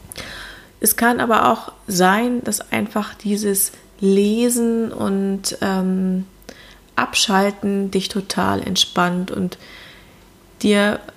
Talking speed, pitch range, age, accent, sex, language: 90 wpm, 185-215 Hz, 20-39, German, female, German